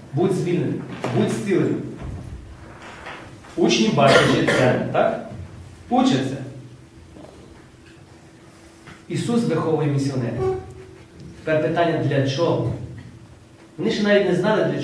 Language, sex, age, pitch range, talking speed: Ukrainian, male, 40-59, 130-210 Hz, 90 wpm